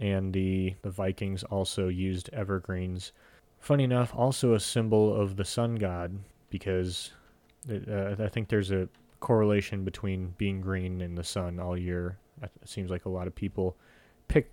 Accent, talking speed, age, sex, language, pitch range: American, 165 wpm, 30-49, male, English, 95-115 Hz